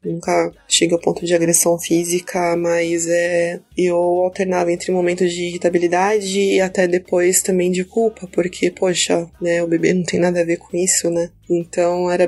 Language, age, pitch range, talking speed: Portuguese, 20-39, 170-185 Hz, 175 wpm